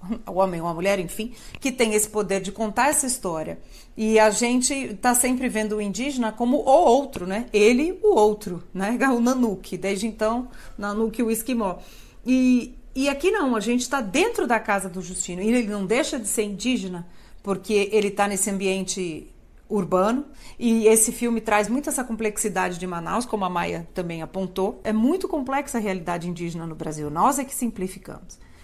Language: Portuguese